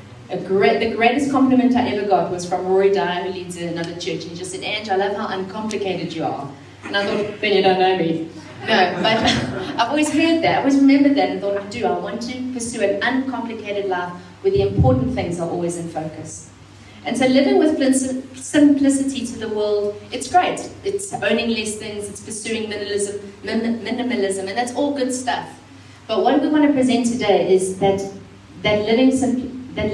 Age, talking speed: 30-49, 200 wpm